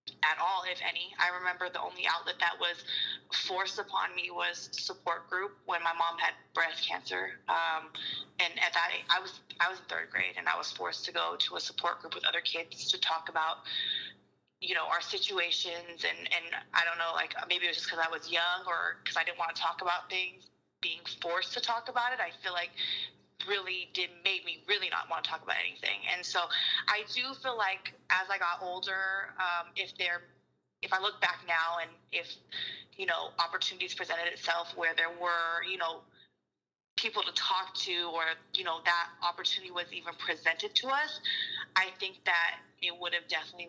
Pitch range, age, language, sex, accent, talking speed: 170-190 Hz, 20-39, English, female, American, 205 wpm